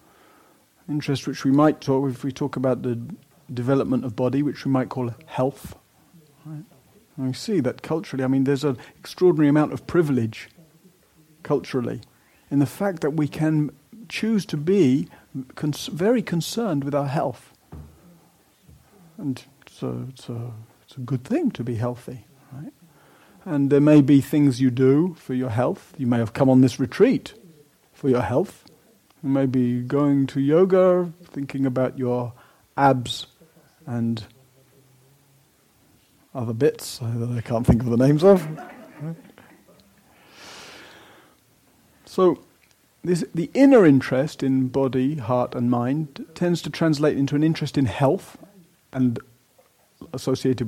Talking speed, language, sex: 140 wpm, English, male